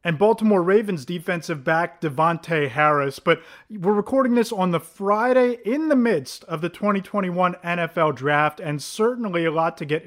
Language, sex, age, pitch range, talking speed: English, male, 30-49, 150-200 Hz, 165 wpm